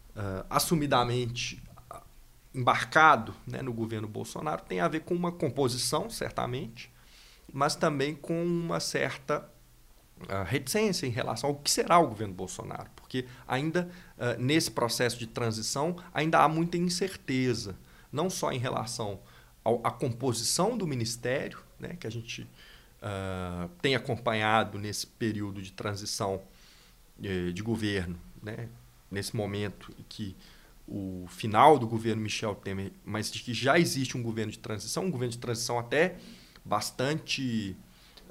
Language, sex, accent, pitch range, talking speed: Portuguese, male, Brazilian, 110-150 Hz, 140 wpm